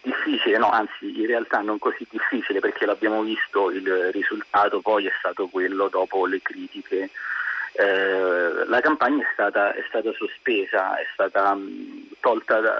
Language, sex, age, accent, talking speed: Italian, male, 40-59, native, 155 wpm